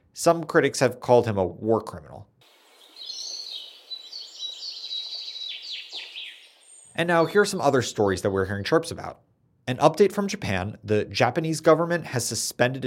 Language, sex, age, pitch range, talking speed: English, male, 30-49, 105-150 Hz, 135 wpm